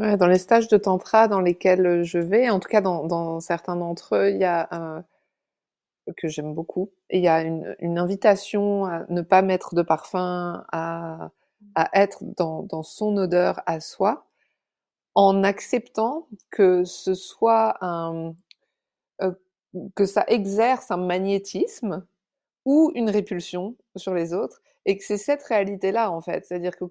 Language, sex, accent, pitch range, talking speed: French, female, French, 180-220 Hz, 160 wpm